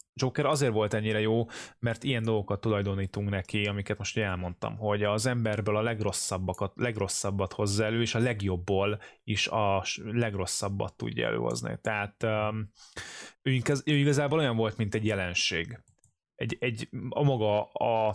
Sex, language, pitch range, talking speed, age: male, Hungarian, 100-125 Hz, 140 wpm, 20-39